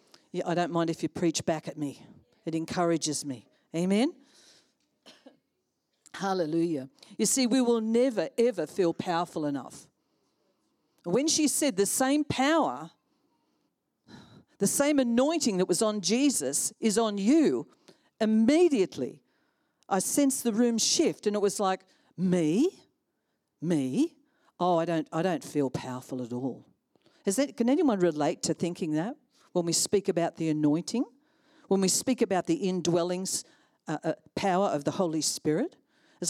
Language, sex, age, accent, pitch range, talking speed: English, female, 50-69, Australian, 170-250 Hz, 145 wpm